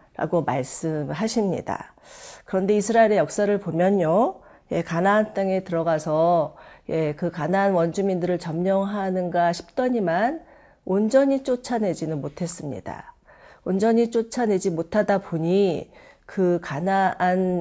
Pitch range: 165-225 Hz